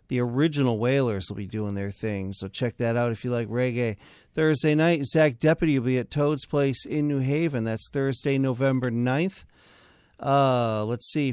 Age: 40-59